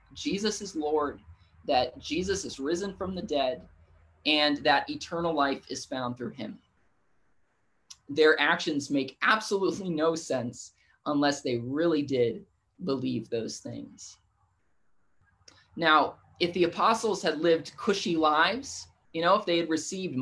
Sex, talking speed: male, 135 wpm